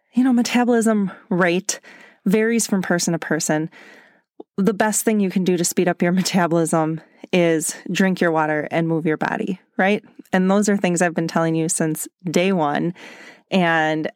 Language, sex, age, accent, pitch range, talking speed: English, female, 30-49, American, 170-230 Hz, 175 wpm